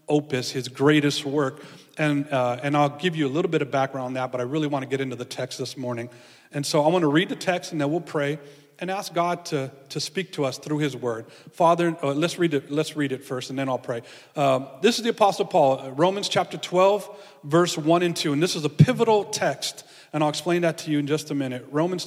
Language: English